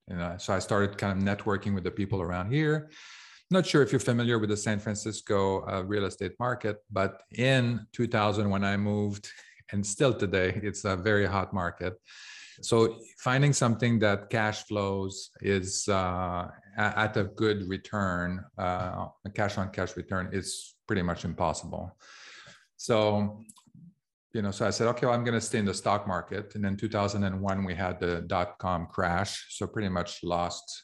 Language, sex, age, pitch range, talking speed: English, male, 40-59, 95-110 Hz, 170 wpm